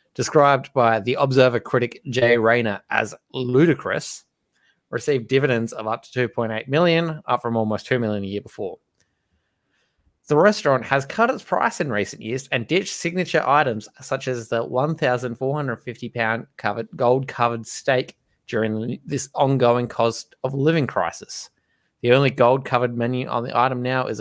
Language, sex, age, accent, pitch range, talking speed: English, male, 20-39, Australian, 115-140 Hz, 145 wpm